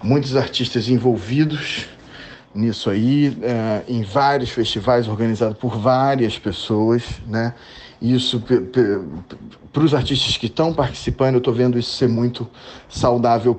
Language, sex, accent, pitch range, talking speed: Portuguese, male, Brazilian, 115-140 Hz, 135 wpm